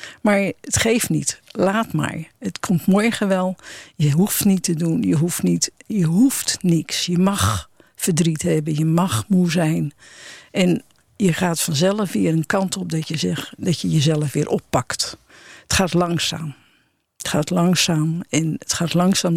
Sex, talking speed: female, 170 wpm